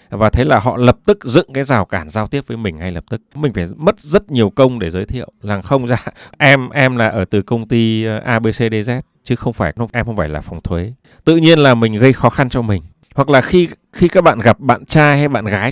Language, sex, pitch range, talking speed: Vietnamese, male, 110-150 Hz, 255 wpm